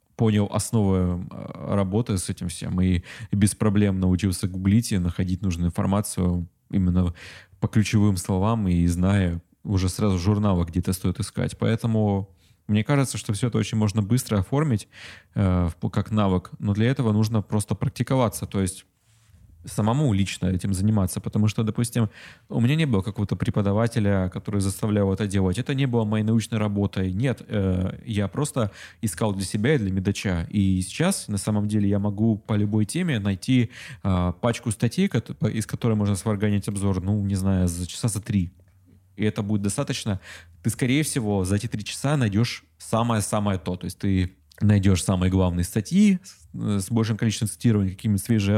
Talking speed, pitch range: 165 wpm, 95-115 Hz